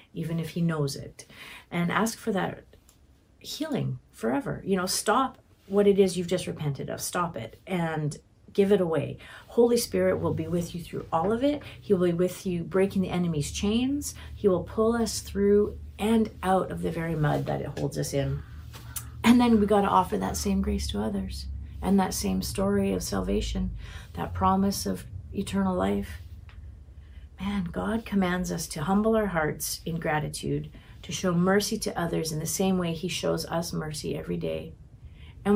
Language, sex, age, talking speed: English, female, 40-59, 185 wpm